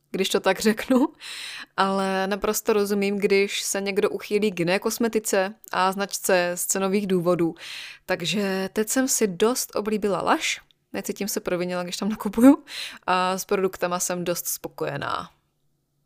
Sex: female